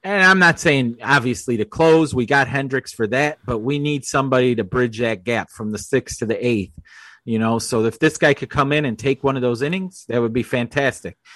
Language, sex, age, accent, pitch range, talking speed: English, male, 30-49, American, 115-145 Hz, 240 wpm